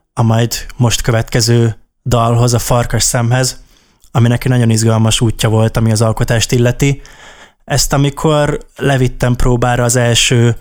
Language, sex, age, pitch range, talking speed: Hungarian, male, 20-39, 115-130 Hz, 135 wpm